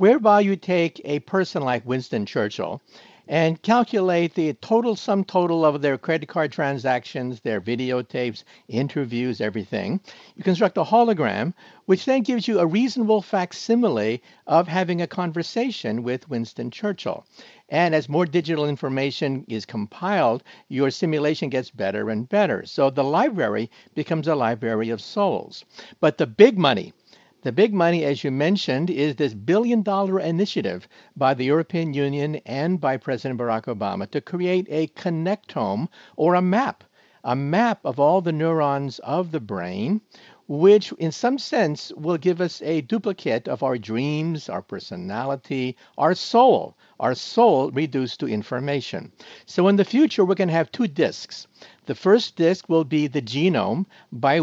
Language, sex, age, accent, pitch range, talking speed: English, male, 60-79, American, 135-195 Hz, 155 wpm